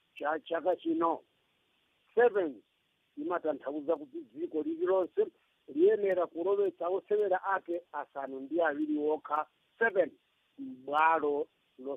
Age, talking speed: 50-69, 135 wpm